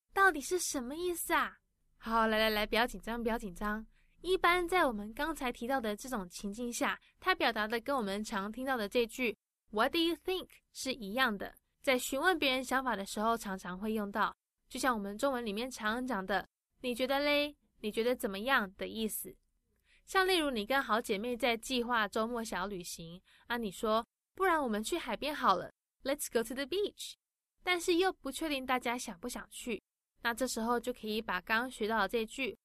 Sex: female